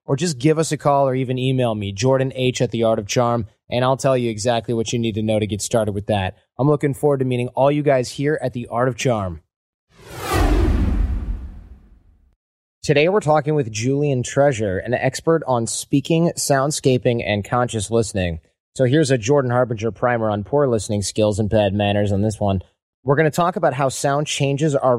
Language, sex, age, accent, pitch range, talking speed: English, male, 30-49, American, 105-135 Hz, 200 wpm